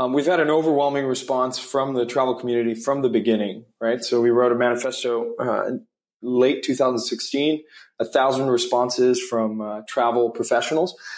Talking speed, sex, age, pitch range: 160 wpm, male, 20-39, 120-140 Hz